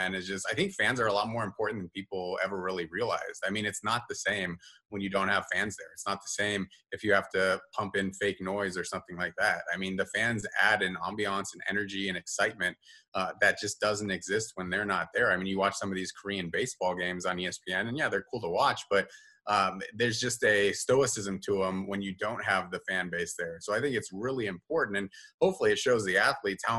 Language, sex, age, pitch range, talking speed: English, male, 30-49, 95-105 Hz, 245 wpm